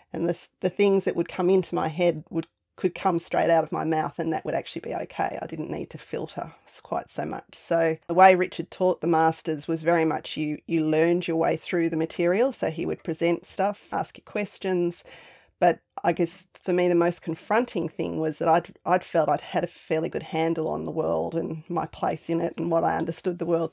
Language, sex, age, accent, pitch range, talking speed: English, female, 30-49, Australian, 165-185 Hz, 235 wpm